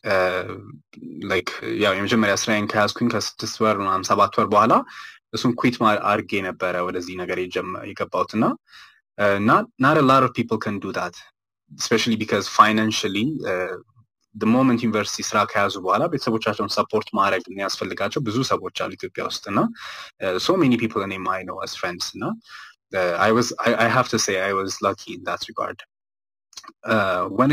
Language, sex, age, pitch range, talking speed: Amharic, male, 20-39, 100-120 Hz, 125 wpm